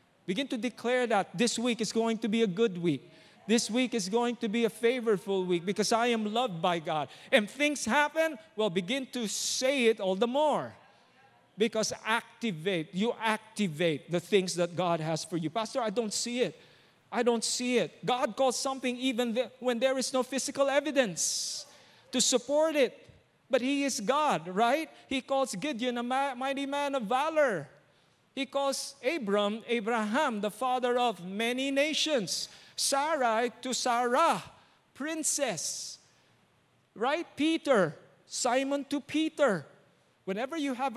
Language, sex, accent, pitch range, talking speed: English, male, Filipino, 180-255 Hz, 155 wpm